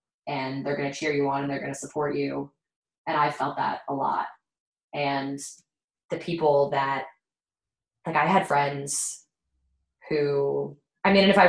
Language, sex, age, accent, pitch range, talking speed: English, female, 20-39, American, 145-175 Hz, 165 wpm